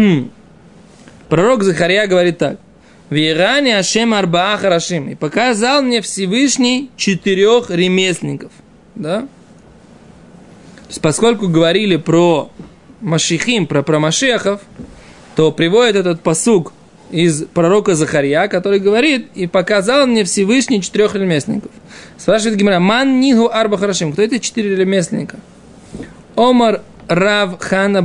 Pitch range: 170-215 Hz